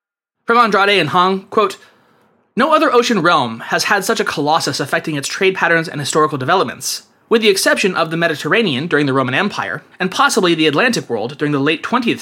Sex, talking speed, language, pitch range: male, 190 wpm, English, 145-215 Hz